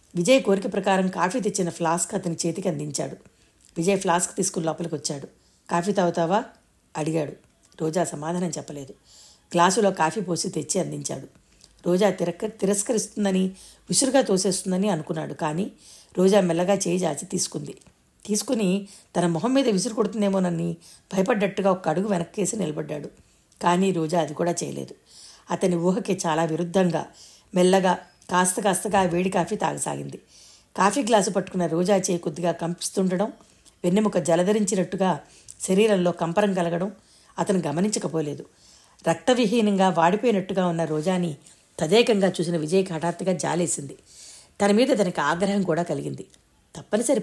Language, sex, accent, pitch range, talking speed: Telugu, female, native, 170-200 Hz, 115 wpm